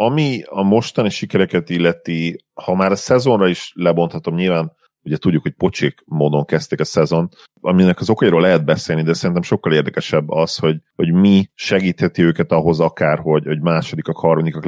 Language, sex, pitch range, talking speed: Hungarian, male, 80-90 Hz, 165 wpm